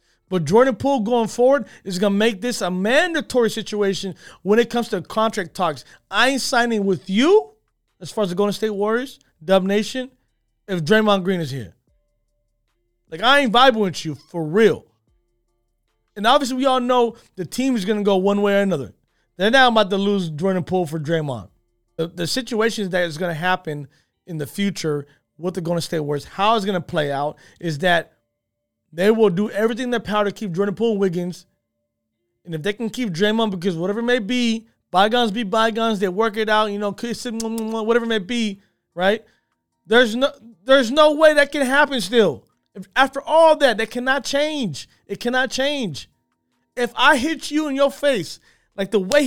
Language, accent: English, American